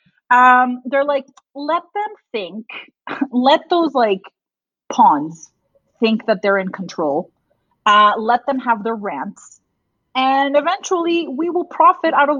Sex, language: female, English